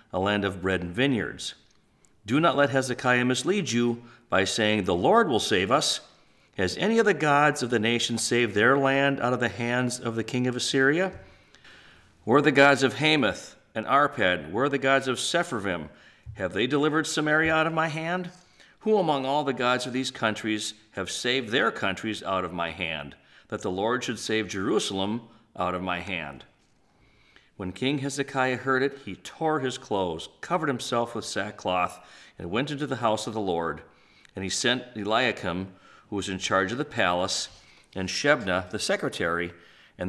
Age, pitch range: 50-69, 95-135 Hz